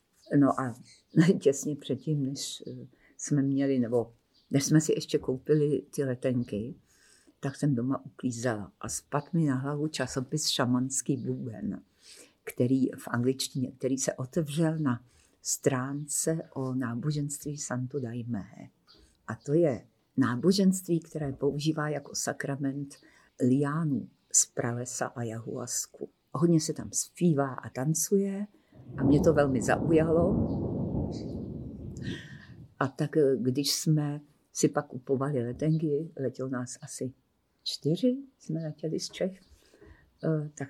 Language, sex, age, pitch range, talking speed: Czech, female, 50-69, 125-155 Hz, 115 wpm